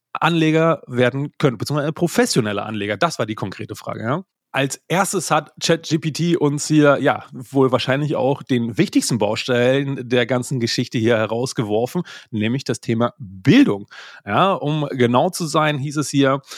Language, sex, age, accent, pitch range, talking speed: German, male, 30-49, German, 125-165 Hz, 150 wpm